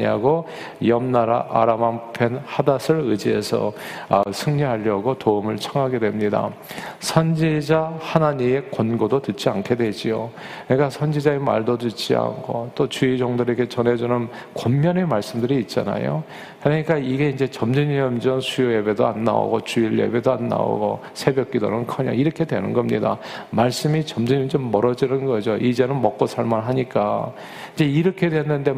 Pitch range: 115-155 Hz